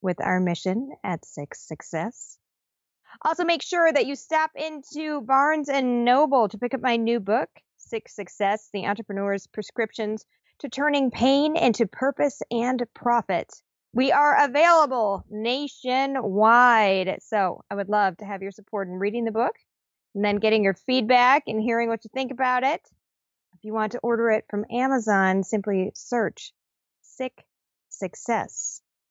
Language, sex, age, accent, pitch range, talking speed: English, female, 20-39, American, 200-265 Hz, 155 wpm